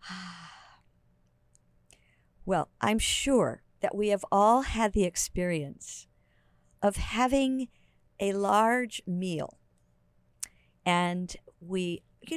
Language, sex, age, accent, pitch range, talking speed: English, female, 50-69, American, 175-235 Hz, 90 wpm